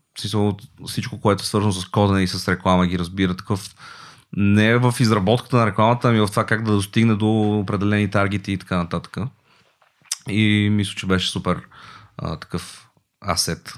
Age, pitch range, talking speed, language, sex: 30-49, 95-115 Hz, 155 wpm, Bulgarian, male